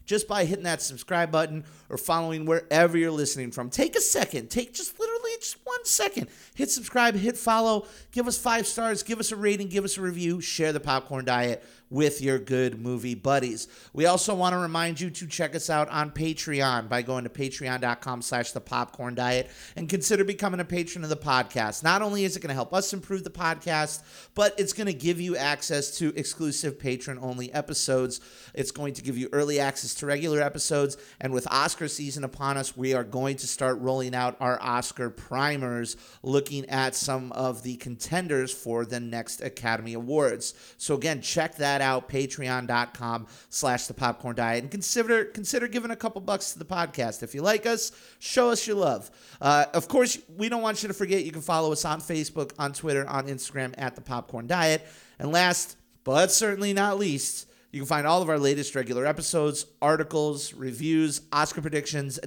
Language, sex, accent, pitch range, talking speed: English, male, American, 130-175 Hz, 200 wpm